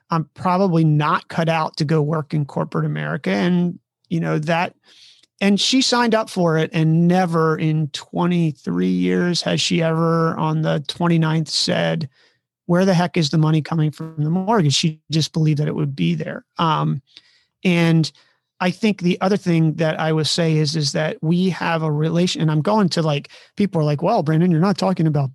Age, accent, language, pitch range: 30-49, American, English, 155-180 Hz